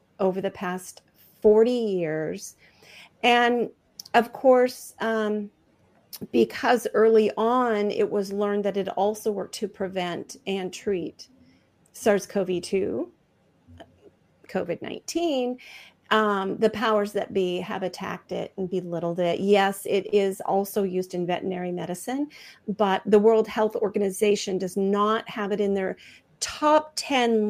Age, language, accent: 40-59, English, American